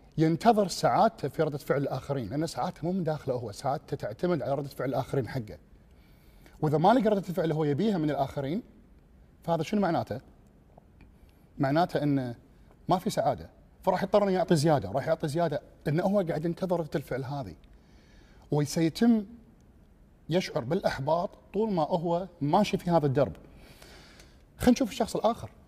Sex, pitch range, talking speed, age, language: male, 135-180 Hz, 150 wpm, 40-59, Arabic